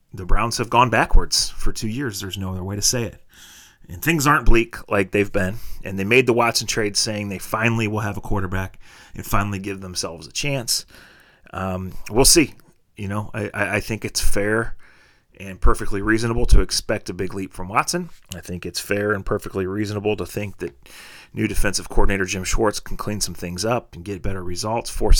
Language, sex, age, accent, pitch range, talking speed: English, male, 30-49, American, 95-115 Hz, 205 wpm